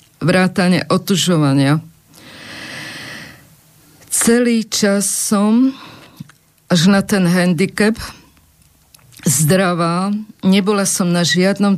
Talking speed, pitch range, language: 70 wpm, 170-205 Hz, Slovak